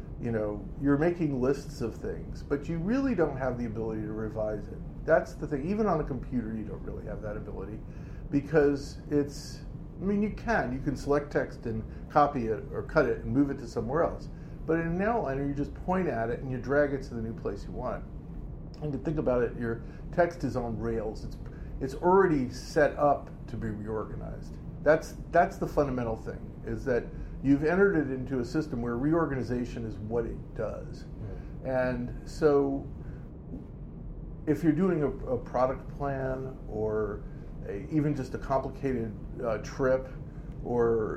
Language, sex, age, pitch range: English, male, 50-69, 115-150 Hz